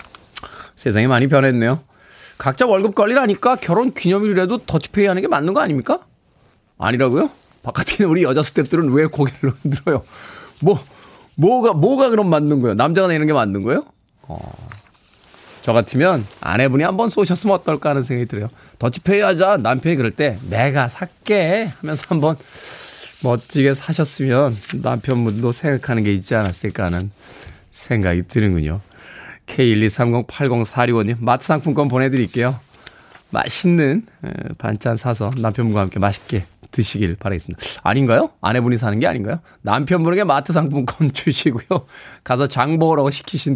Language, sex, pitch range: Korean, male, 115-160 Hz